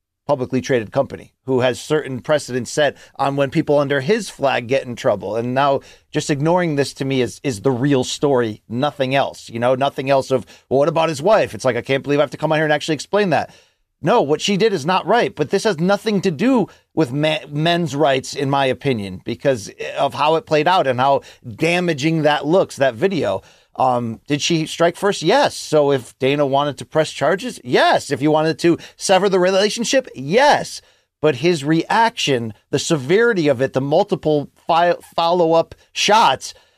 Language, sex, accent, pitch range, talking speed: English, male, American, 135-185 Hz, 200 wpm